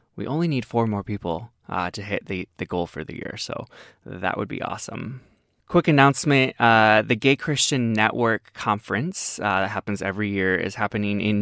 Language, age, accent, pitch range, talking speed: English, 20-39, American, 100-135 Hz, 190 wpm